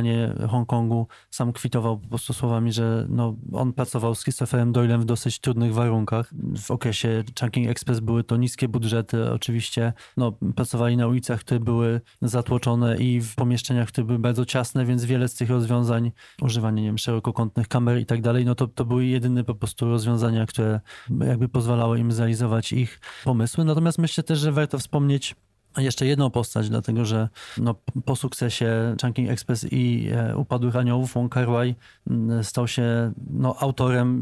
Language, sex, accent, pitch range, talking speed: Polish, male, native, 115-130 Hz, 165 wpm